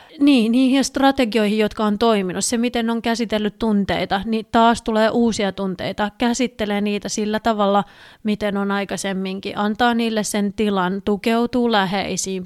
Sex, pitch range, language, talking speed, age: female, 205-245 Hz, Finnish, 135 wpm, 30-49